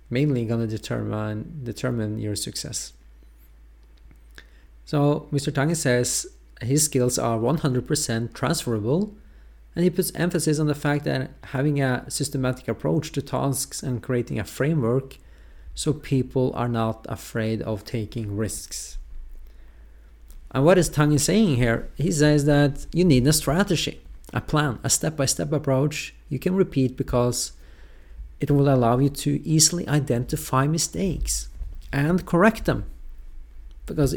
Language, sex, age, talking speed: English, male, 30-49, 135 wpm